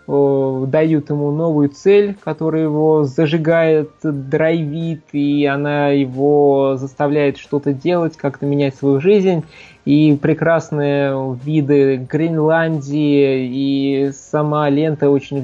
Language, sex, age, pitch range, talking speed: Russian, male, 20-39, 140-165 Hz, 100 wpm